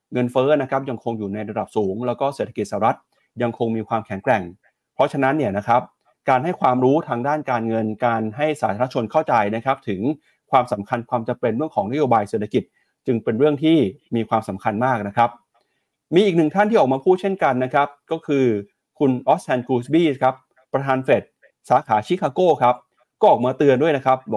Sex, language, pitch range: male, Thai, 115-140 Hz